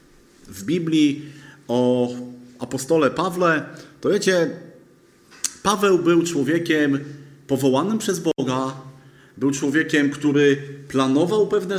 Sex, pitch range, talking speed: male, 135-180 Hz, 90 wpm